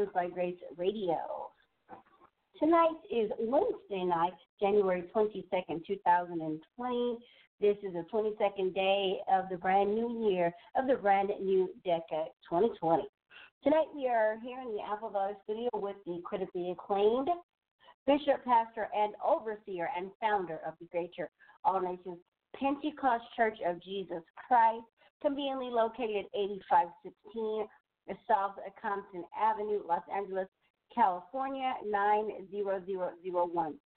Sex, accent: female, American